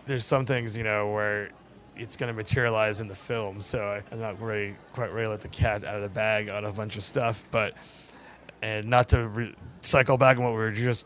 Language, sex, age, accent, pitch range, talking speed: English, male, 20-39, American, 105-135 Hz, 235 wpm